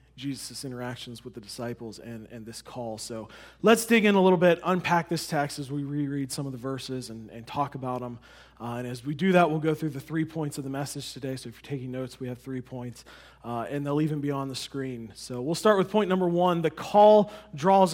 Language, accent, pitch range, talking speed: English, American, 135-180 Hz, 250 wpm